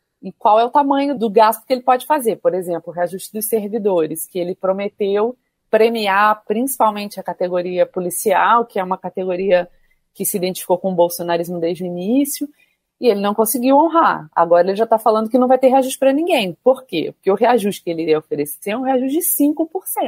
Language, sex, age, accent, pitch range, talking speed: Portuguese, female, 30-49, Brazilian, 180-265 Hz, 200 wpm